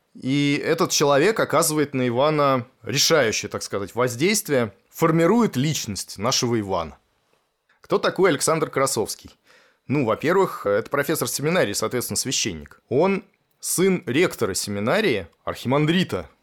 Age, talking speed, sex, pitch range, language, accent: 20-39, 110 wpm, male, 125-160 Hz, Russian, native